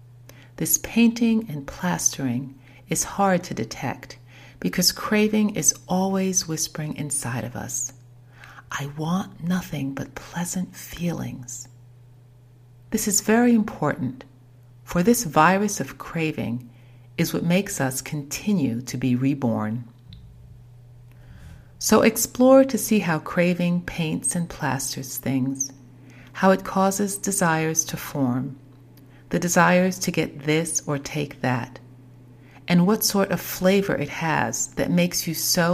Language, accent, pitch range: English, American, 125-180 Hz